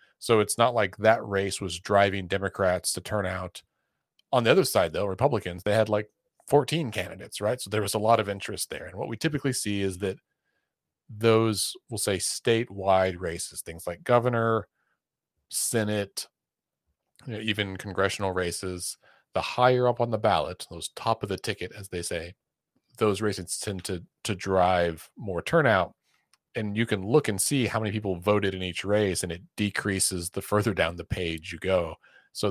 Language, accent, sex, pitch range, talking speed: English, American, male, 90-110 Hz, 180 wpm